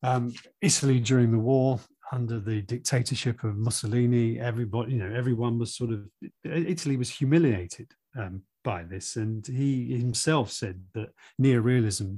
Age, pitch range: 40-59, 105-130 Hz